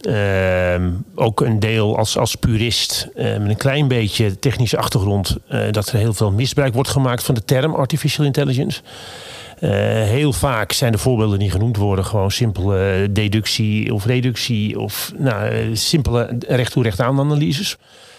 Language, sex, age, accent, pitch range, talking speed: Dutch, male, 40-59, Dutch, 100-130 Hz, 150 wpm